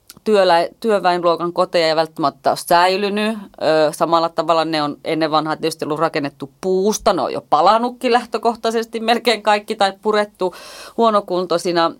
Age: 30-49